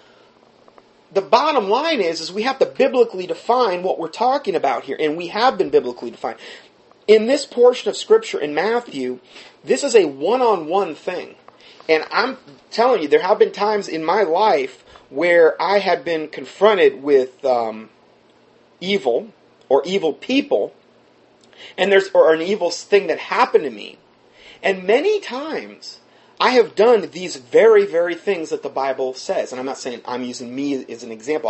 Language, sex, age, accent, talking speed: English, male, 40-59, American, 170 wpm